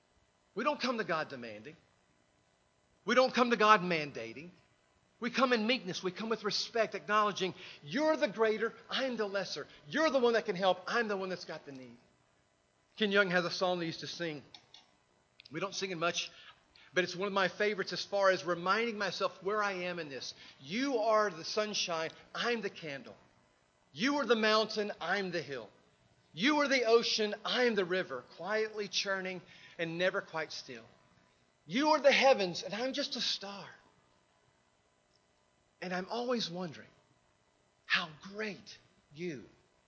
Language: English